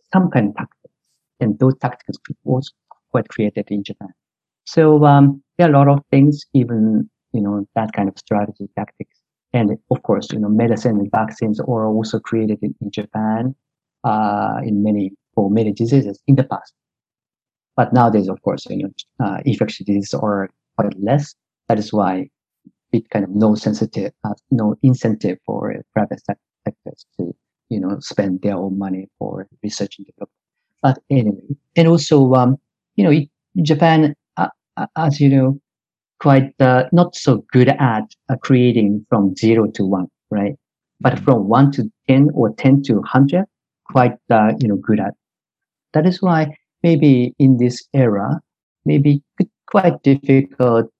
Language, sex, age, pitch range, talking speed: English, male, 50-69, 105-140 Hz, 170 wpm